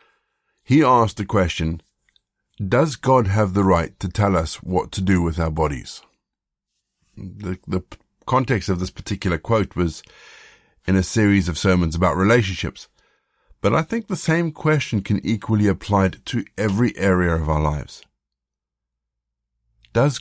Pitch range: 90-115 Hz